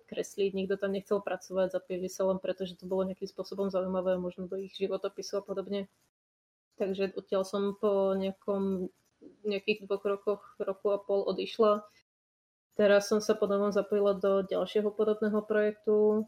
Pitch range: 195-215 Hz